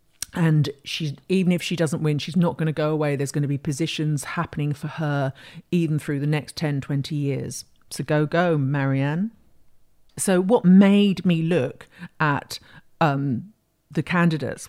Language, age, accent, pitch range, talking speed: English, 50-69, British, 150-180 Hz, 165 wpm